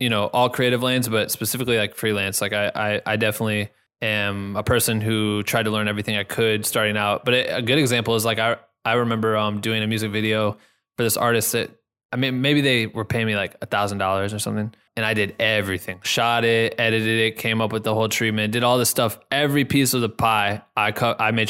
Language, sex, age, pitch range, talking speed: English, male, 20-39, 105-125 Hz, 235 wpm